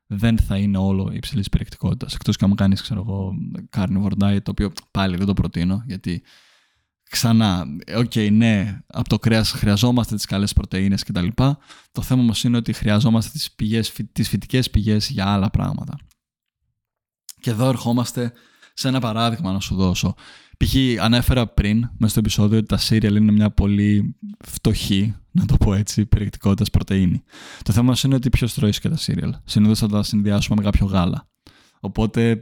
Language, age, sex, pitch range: Greek, 20-39, male, 100-120 Hz